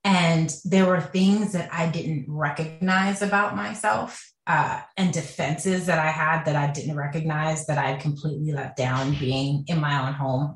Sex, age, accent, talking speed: female, 30-49, American, 170 wpm